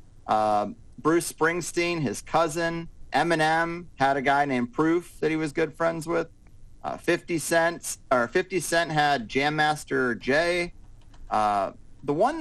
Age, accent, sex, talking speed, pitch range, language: 30-49, American, male, 145 wpm, 130-170 Hz, English